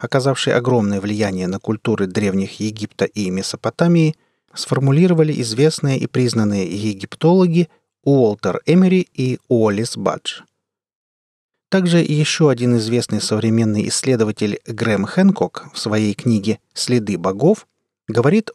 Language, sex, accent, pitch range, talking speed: Russian, male, native, 110-150 Hz, 105 wpm